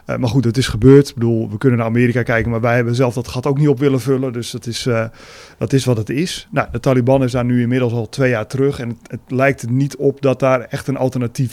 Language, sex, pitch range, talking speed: Dutch, male, 125-140 Hz, 265 wpm